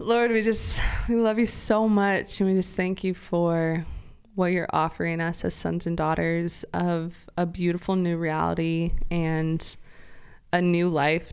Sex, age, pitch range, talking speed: female, 20-39, 165-185 Hz, 165 wpm